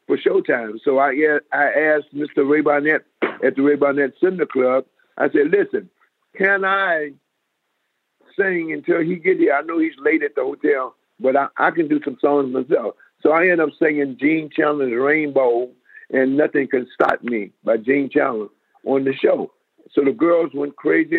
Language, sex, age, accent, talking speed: English, male, 50-69, American, 180 wpm